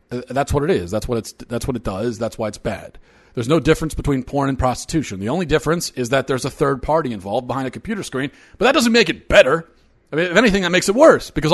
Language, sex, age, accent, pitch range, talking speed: English, male, 40-59, American, 120-155 Hz, 265 wpm